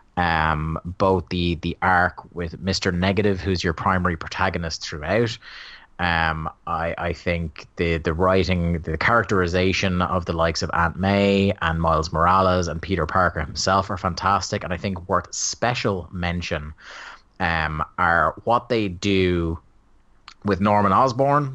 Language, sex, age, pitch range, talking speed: English, male, 30-49, 85-105 Hz, 140 wpm